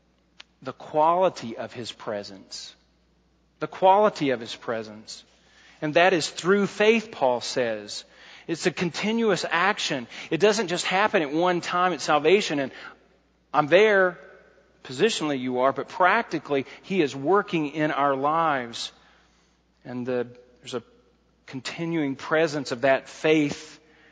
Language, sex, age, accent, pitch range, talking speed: English, male, 40-59, American, 135-185 Hz, 130 wpm